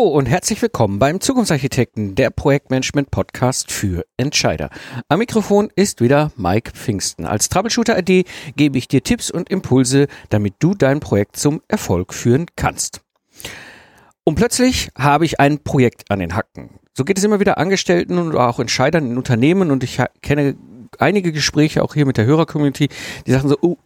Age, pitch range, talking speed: 50-69, 125-180 Hz, 165 wpm